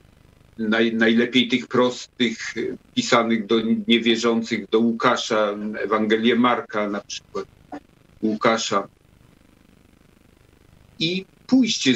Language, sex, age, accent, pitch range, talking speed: Polish, male, 50-69, native, 120-155 Hz, 80 wpm